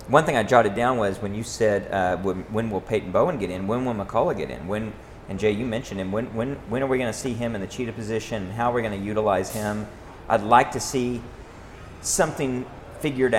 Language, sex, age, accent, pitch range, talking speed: English, male, 40-59, American, 95-115 Hz, 240 wpm